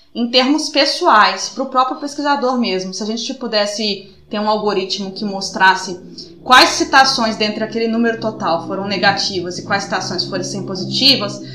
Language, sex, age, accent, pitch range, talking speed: Portuguese, female, 20-39, Brazilian, 200-240 Hz, 160 wpm